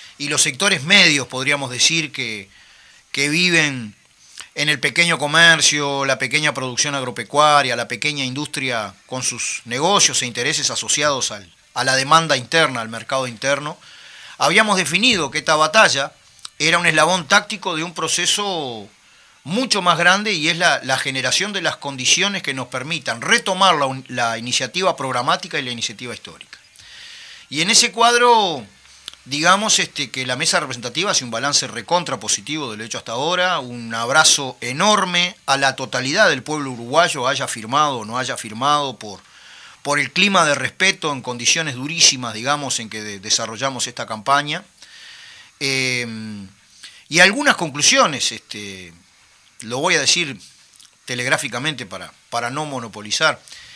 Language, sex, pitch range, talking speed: Spanish, male, 125-165 Hz, 145 wpm